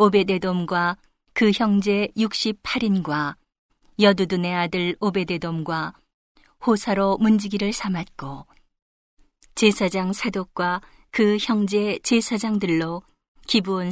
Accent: native